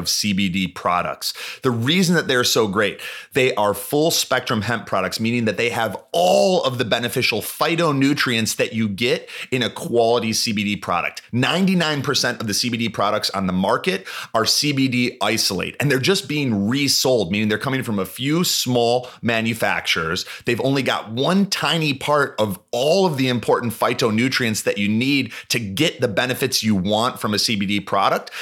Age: 30-49